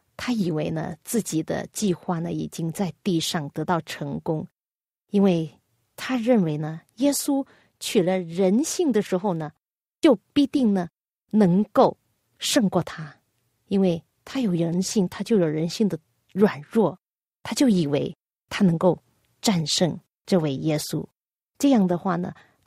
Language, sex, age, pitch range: Chinese, female, 30-49, 165-215 Hz